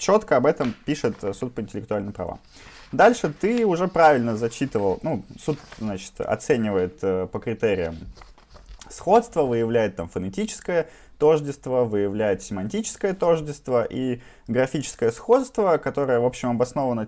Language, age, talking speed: Russian, 20-39, 120 wpm